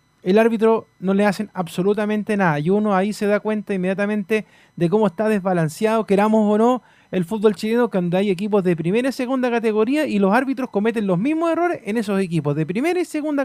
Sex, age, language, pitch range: male, 30-49, Spanish, 195-270 Hz